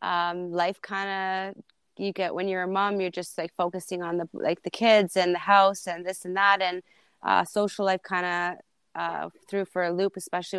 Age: 30-49